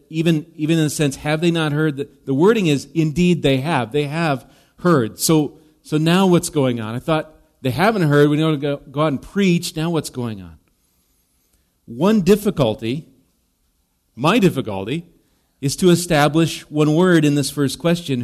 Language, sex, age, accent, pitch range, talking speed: English, male, 40-59, American, 120-155 Hz, 180 wpm